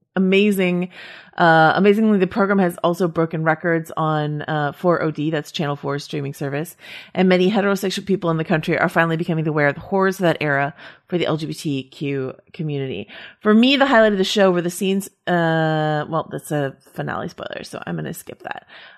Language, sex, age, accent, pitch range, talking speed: English, female, 30-49, American, 150-180 Hz, 190 wpm